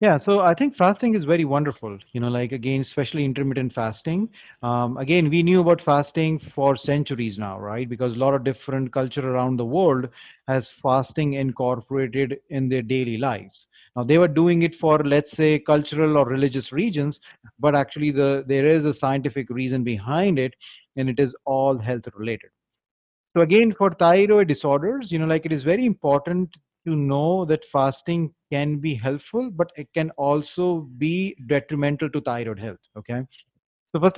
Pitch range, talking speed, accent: 135-165 Hz, 175 wpm, Indian